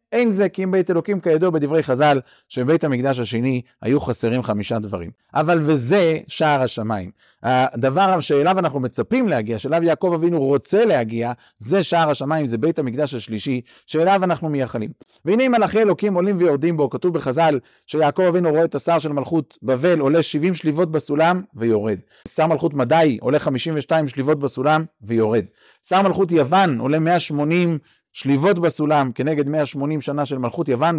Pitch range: 135-180 Hz